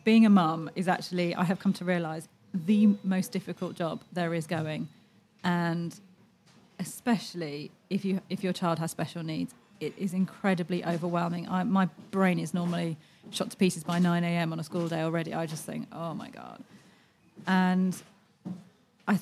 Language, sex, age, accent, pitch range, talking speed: English, female, 30-49, British, 175-205 Hz, 170 wpm